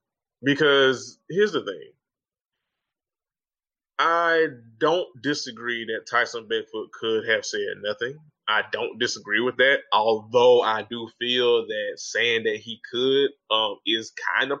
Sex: male